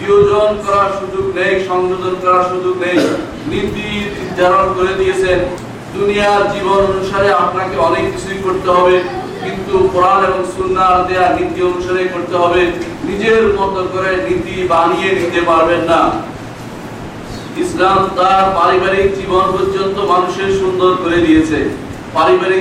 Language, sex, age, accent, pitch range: Bengali, male, 50-69, native, 180-195 Hz